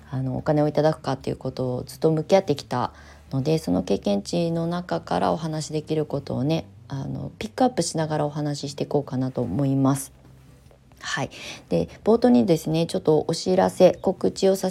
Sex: female